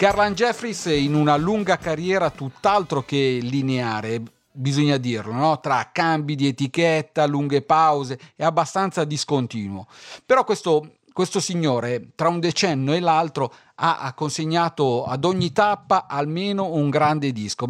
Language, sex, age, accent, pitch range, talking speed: Italian, male, 40-59, native, 135-185 Hz, 135 wpm